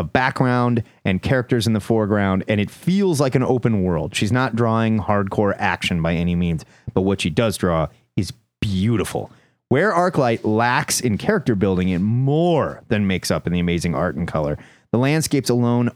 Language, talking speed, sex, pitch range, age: English, 180 wpm, male, 95-135 Hz, 30-49